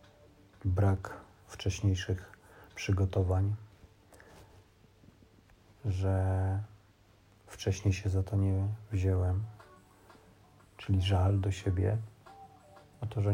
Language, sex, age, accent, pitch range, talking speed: Polish, male, 40-59, native, 95-105 Hz, 75 wpm